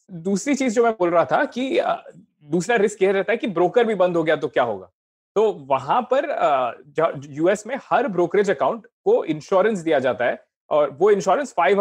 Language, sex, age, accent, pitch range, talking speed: Hindi, male, 30-49, native, 170-240 Hz, 195 wpm